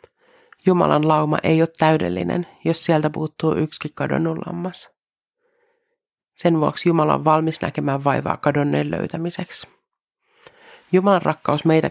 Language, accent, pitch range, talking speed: Finnish, native, 155-200 Hz, 115 wpm